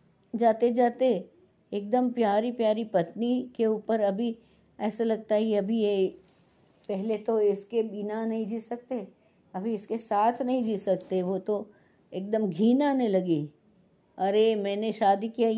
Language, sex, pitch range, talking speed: Hindi, female, 195-250 Hz, 145 wpm